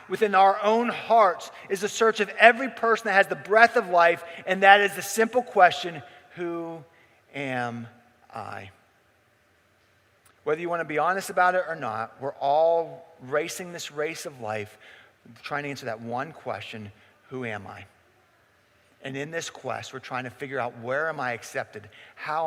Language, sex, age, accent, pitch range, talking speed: English, male, 40-59, American, 130-200 Hz, 175 wpm